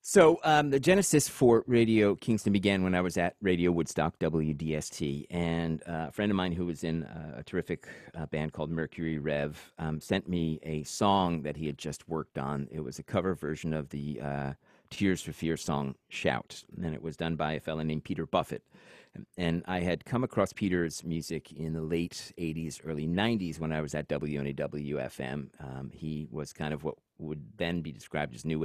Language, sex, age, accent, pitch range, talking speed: English, male, 40-59, American, 75-90 Hz, 195 wpm